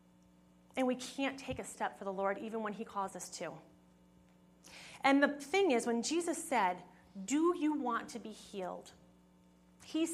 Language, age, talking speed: English, 30-49, 170 wpm